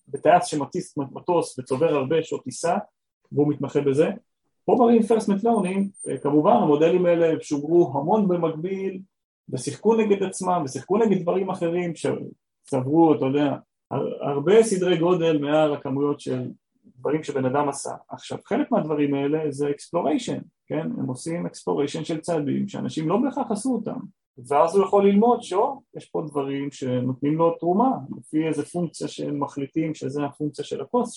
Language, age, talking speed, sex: Hebrew, 30-49, 145 wpm, male